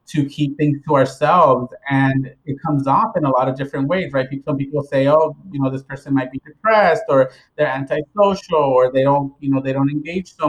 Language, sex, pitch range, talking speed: English, male, 130-150 Hz, 225 wpm